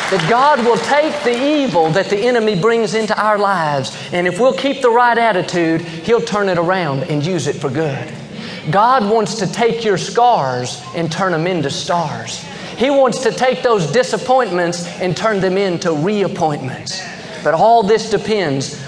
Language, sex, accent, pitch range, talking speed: English, male, American, 170-230 Hz, 175 wpm